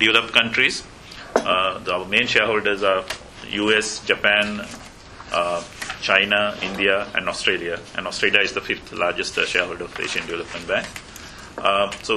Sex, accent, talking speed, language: male, Indian, 145 wpm, English